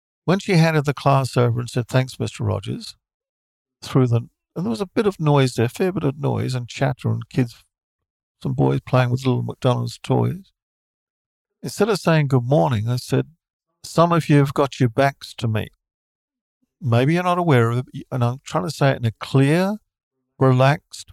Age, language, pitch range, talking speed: 50-69, English, 120-155 Hz, 195 wpm